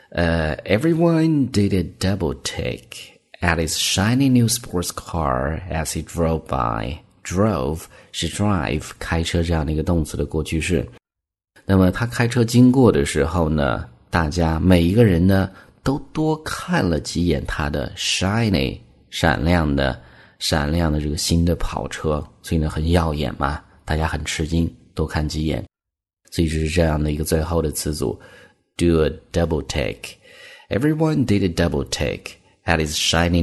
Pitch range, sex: 80-95 Hz, male